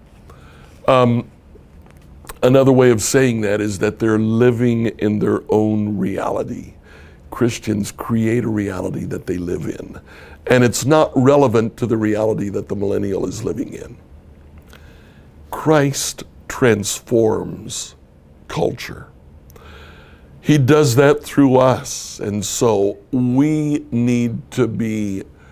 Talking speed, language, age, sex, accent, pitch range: 115 wpm, English, 60-79, male, American, 75-125 Hz